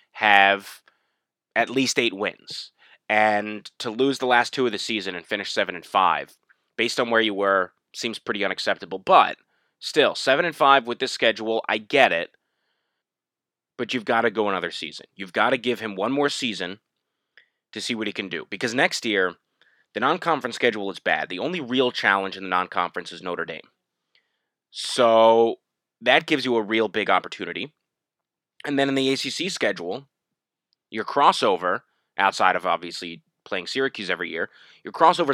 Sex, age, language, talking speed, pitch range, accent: male, 30-49, English, 175 wpm, 100-135 Hz, American